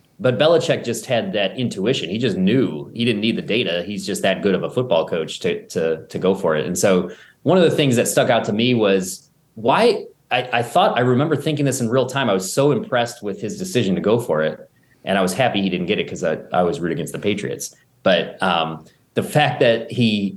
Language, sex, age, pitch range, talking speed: English, male, 30-49, 95-130 Hz, 245 wpm